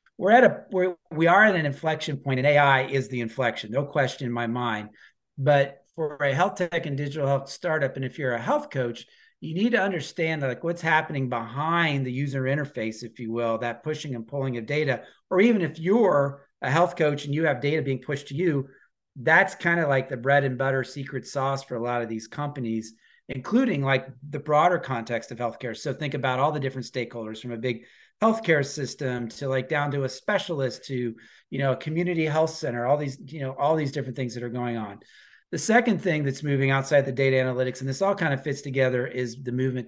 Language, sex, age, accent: English, male, 40-59, American